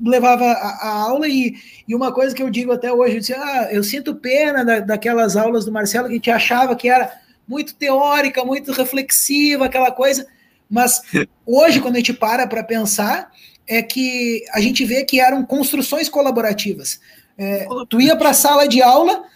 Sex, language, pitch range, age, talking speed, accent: male, Portuguese, 225-275 Hz, 20-39, 175 wpm, Brazilian